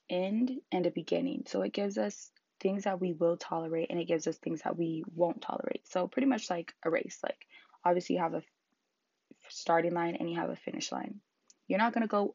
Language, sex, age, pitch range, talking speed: English, female, 20-39, 170-200 Hz, 230 wpm